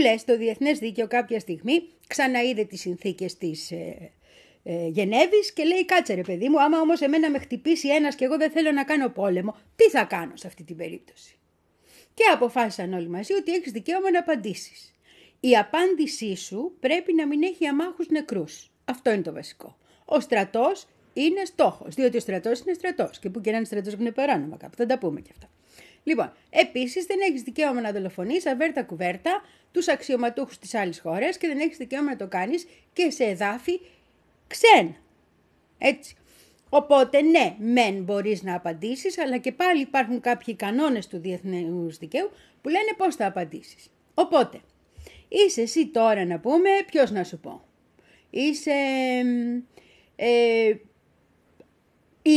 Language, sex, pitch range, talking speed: Greek, female, 205-320 Hz, 160 wpm